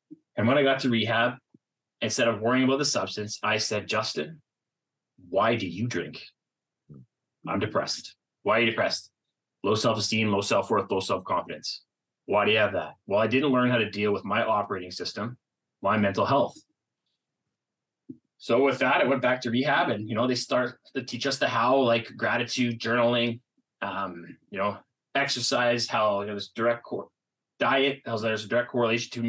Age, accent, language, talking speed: 20-39, American, English, 175 wpm